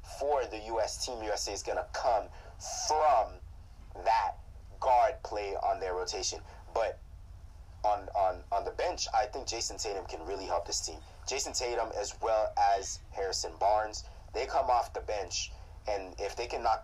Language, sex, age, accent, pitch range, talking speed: English, male, 30-49, American, 85-105 Hz, 170 wpm